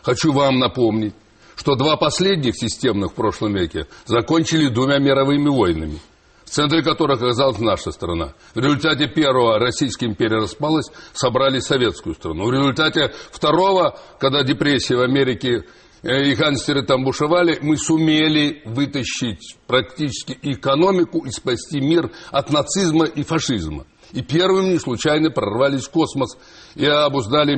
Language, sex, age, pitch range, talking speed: Russian, male, 60-79, 125-155 Hz, 135 wpm